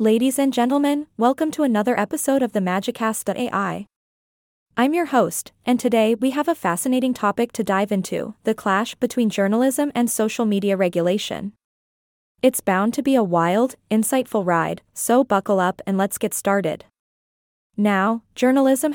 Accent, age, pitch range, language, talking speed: American, 20-39, 200-245 Hz, English, 150 wpm